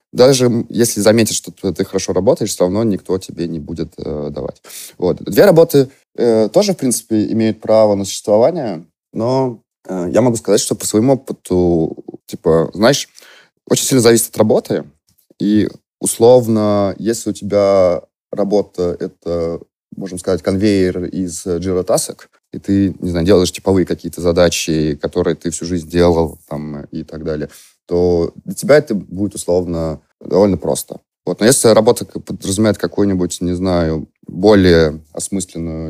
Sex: male